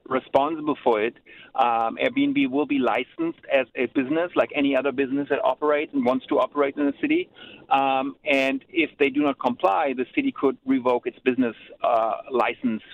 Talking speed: 180 wpm